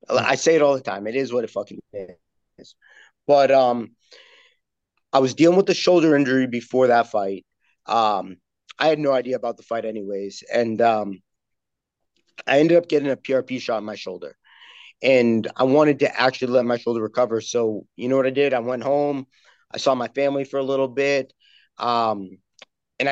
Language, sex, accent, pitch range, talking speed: English, male, American, 120-145 Hz, 190 wpm